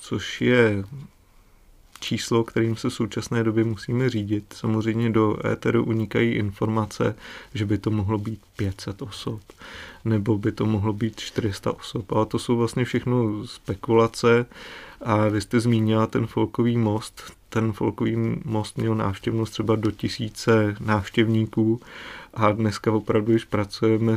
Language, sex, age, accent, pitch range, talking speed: Czech, male, 30-49, native, 110-120 Hz, 140 wpm